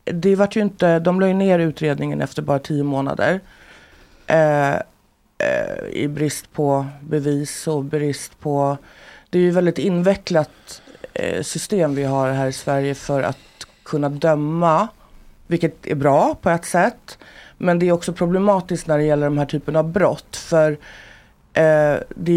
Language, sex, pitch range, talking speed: Swedish, female, 145-175 Hz, 160 wpm